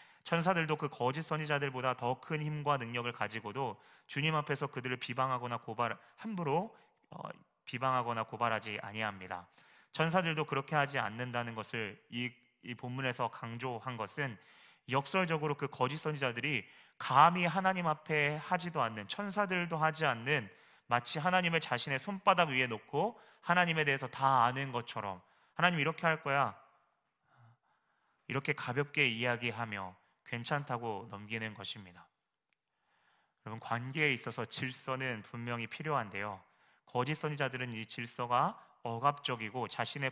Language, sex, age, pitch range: Korean, male, 30-49, 115-150 Hz